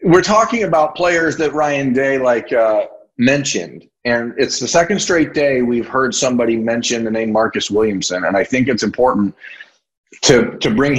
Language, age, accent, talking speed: English, 40-59, American, 175 wpm